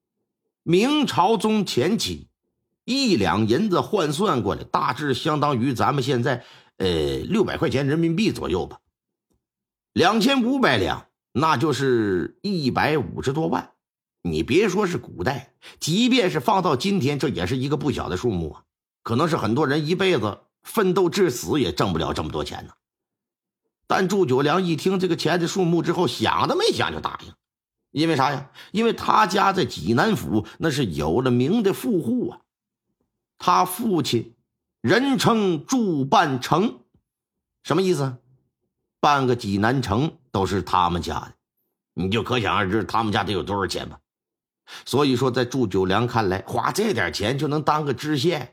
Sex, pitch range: male, 125-190 Hz